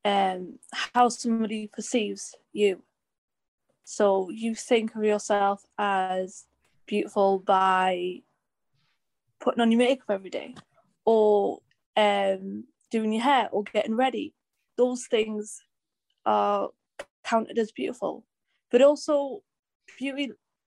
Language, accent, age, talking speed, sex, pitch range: English, British, 10-29, 105 wpm, female, 205-240 Hz